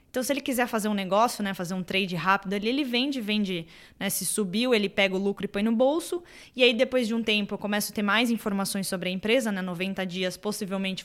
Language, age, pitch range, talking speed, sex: English, 20-39, 190-240 Hz, 250 wpm, female